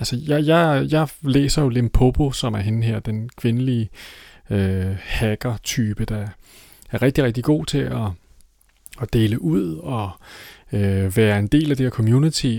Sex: male